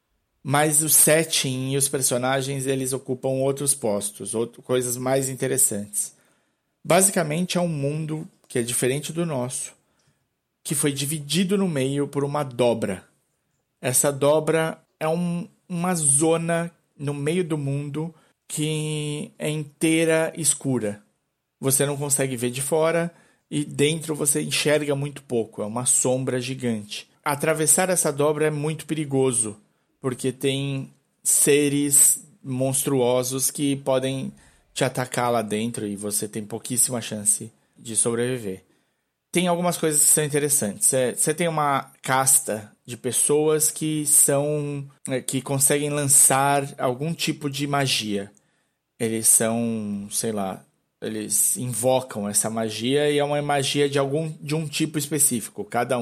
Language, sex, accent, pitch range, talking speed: Portuguese, male, Brazilian, 125-155 Hz, 125 wpm